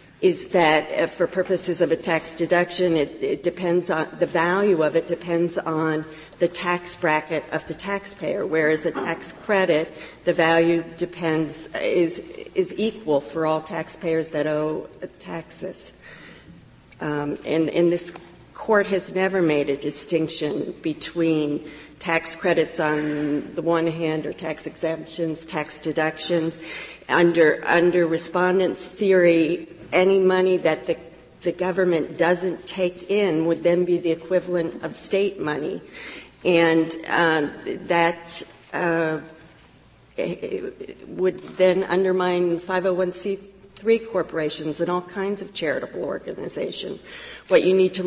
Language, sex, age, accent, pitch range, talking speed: English, female, 50-69, American, 160-180 Hz, 125 wpm